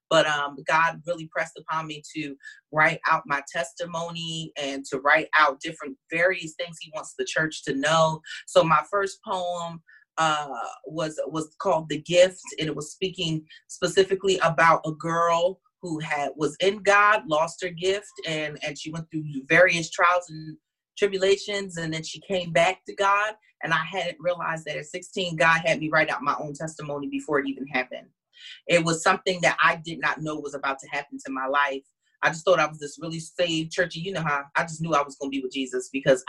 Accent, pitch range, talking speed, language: American, 145-180 Hz, 205 wpm, English